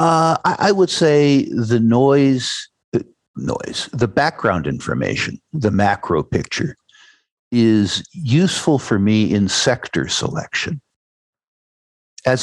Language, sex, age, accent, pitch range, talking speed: English, male, 60-79, American, 90-125 Hz, 100 wpm